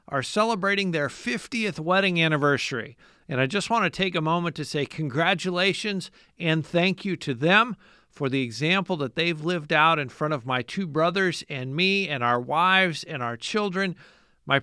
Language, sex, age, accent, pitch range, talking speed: English, male, 50-69, American, 150-195 Hz, 175 wpm